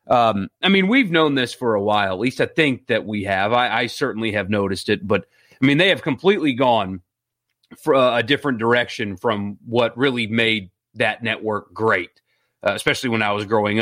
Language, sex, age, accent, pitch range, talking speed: English, male, 30-49, American, 110-140 Hz, 200 wpm